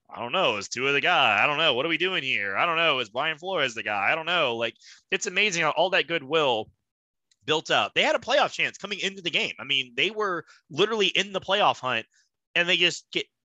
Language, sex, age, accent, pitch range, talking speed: English, male, 20-39, American, 105-140 Hz, 260 wpm